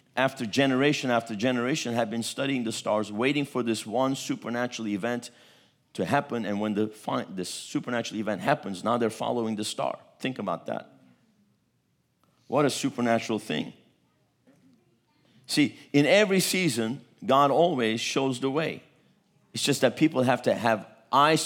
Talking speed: 150 wpm